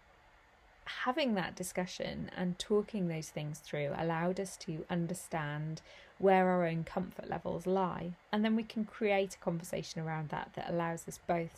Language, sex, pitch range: English, female, 170-205 Hz